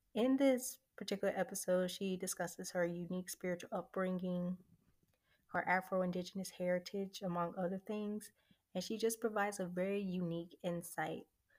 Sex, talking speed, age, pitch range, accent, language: female, 125 wpm, 20-39, 175-205 Hz, American, English